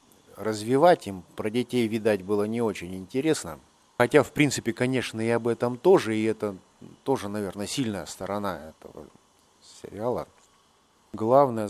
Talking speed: 135 wpm